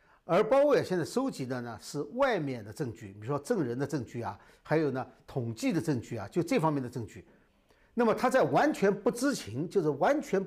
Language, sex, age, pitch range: Chinese, male, 50-69, 120-200 Hz